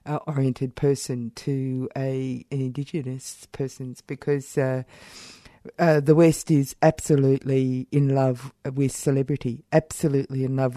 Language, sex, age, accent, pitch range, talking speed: English, female, 50-69, Australian, 130-145 Hz, 115 wpm